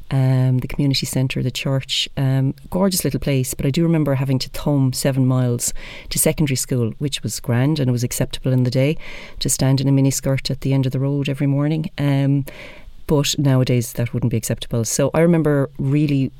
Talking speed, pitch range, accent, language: 205 wpm, 125-145 Hz, Irish, English